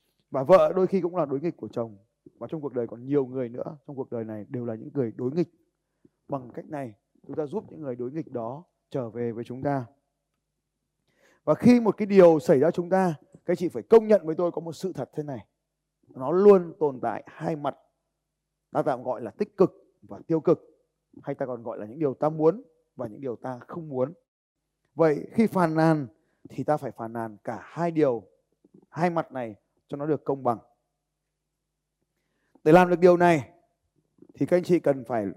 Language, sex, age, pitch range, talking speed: Vietnamese, male, 20-39, 125-170 Hz, 215 wpm